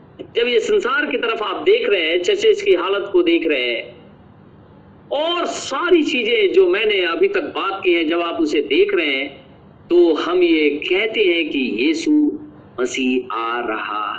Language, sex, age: Hindi, male, 50-69